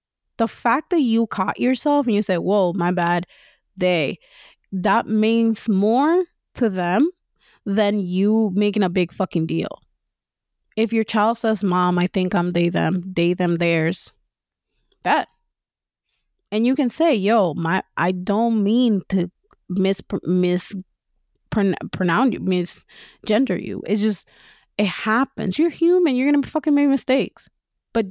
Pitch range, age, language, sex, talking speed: 175-225 Hz, 20-39, English, female, 145 wpm